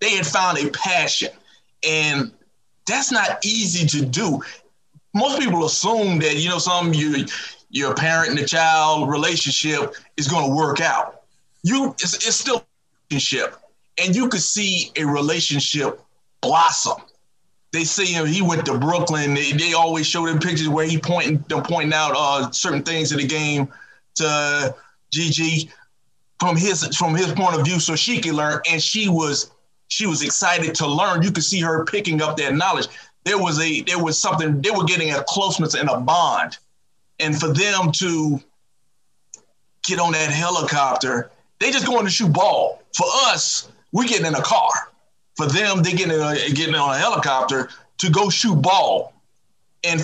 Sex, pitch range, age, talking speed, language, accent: male, 150-175 Hz, 20-39, 175 wpm, English, American